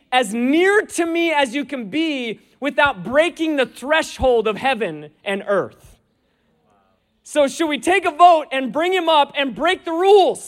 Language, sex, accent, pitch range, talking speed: English, male, American, 185-290 Hz, 170 wpm